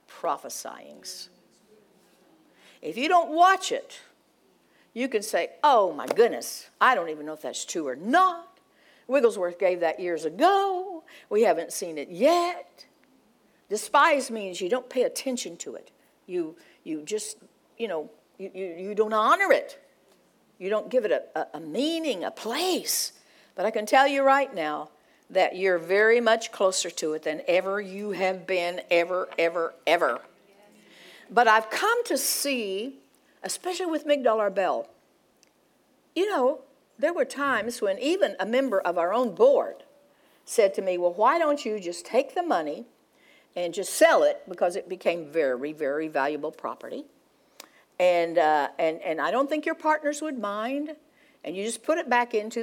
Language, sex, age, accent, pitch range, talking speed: English, female, 60-79, American, 190-320 Hz, 165 wpm